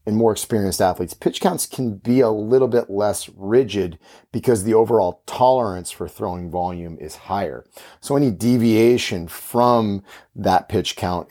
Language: English